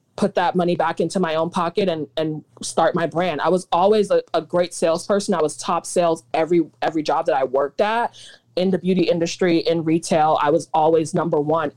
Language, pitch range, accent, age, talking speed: English, 155-190 Hz, American, 20-39, 215 wpm